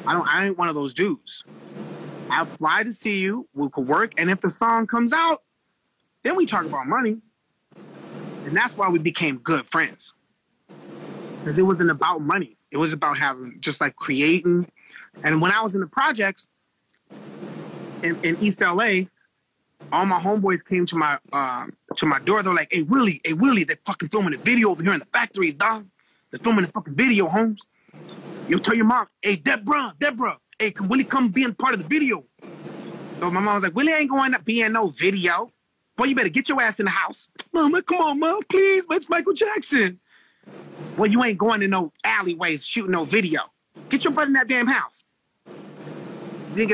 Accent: American